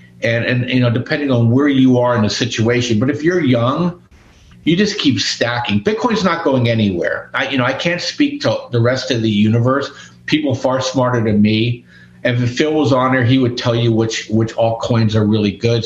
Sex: male